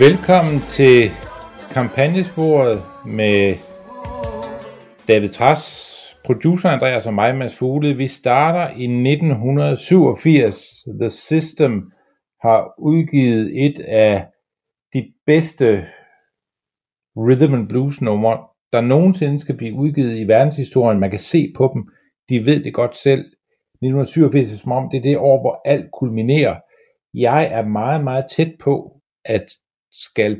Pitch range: 110-145 Hz